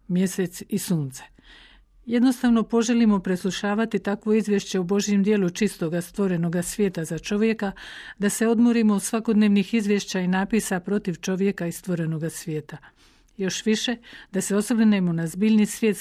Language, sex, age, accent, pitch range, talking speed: Croatian, female, 50-69, native, 180-210 Hz, 140 wpm